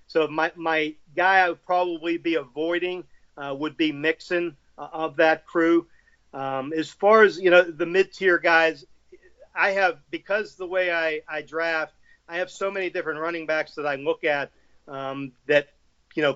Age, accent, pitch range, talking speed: 40-59, American, 150-170 Hz, 180 wpm